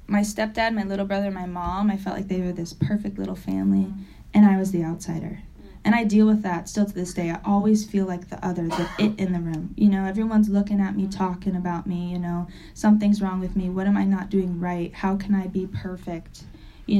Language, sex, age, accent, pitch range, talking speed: English, female, 10-29, American, 185-215 Hz, 240 wpm